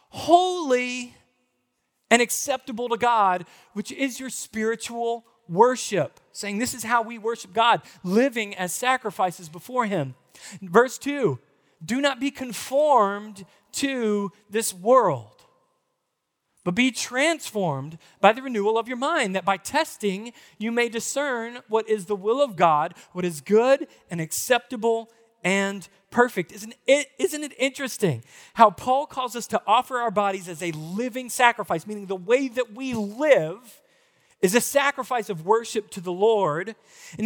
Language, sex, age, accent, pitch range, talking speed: English, male, 40-59, American, 200-255 Hz, 145 wpm